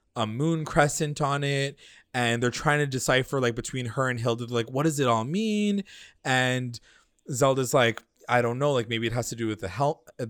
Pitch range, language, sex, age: 110-145 Hz, English, male, 20-39